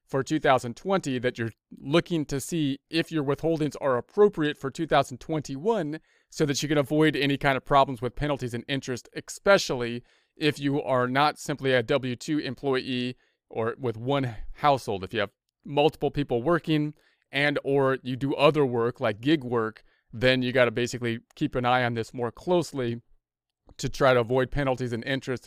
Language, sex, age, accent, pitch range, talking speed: English, male, 30-49, American, 125-155 Hz, 175 wpm